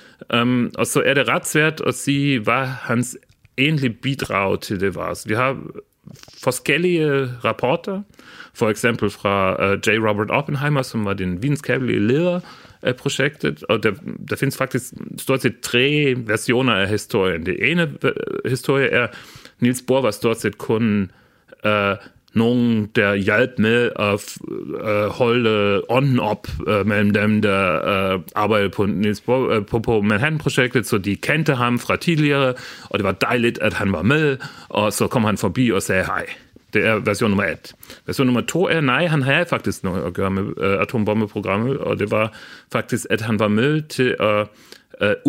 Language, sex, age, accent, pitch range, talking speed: Danish, male, 40-59, German, 105-140 Hz, 165 wpm